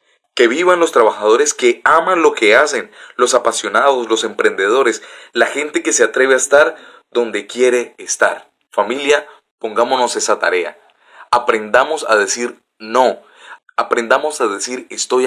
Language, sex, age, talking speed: Spanish, male, 30-49, 140 wpm